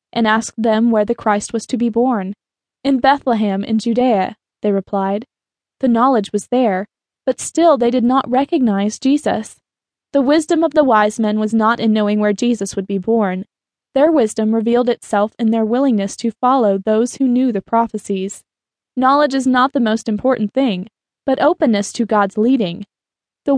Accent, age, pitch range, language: American, 20-39, 215-270 Hz, English